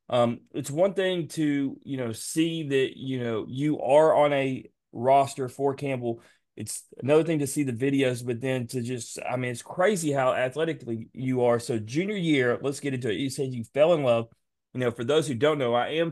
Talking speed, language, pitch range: 220 wpm, English, 120-145 Hz